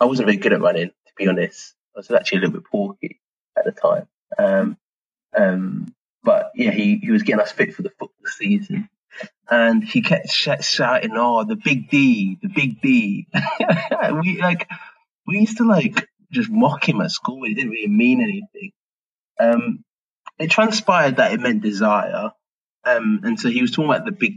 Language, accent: English, British